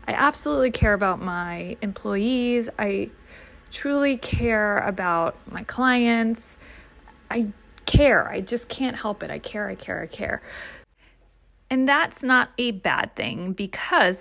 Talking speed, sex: 135 wpm, female